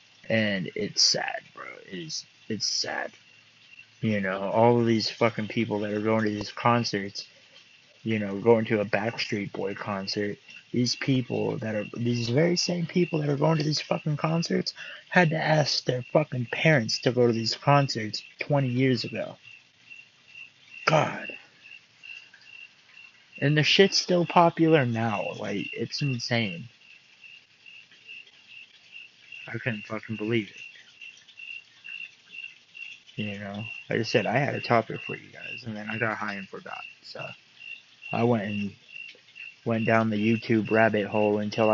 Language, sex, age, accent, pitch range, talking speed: English, male, 30-49, American, 105-125 Hz, 150 wpm